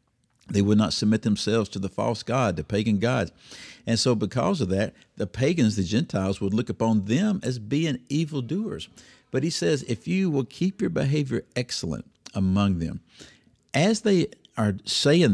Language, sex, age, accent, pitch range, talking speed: English, male, 50-69, American, 95-120 Hz, 170 wpm